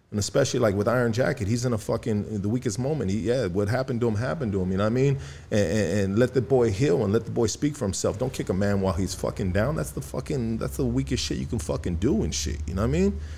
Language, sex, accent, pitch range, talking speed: English, male, American, 95-125 Hz, 300 wpm